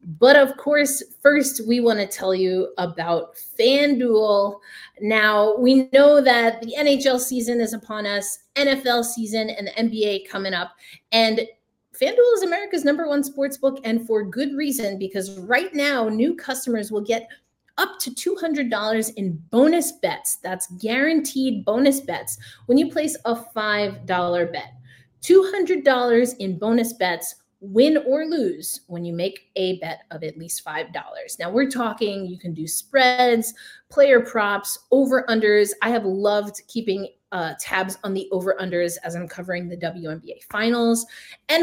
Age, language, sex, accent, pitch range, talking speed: 30-49, English, female, American, 190-270 Hz, 155 wpm